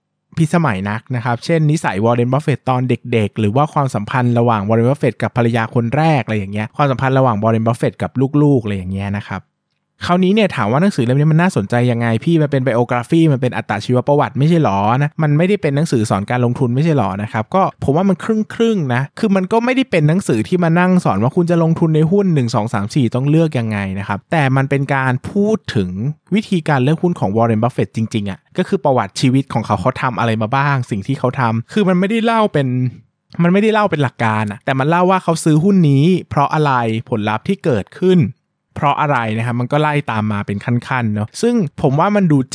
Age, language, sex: 20-39, Thai, male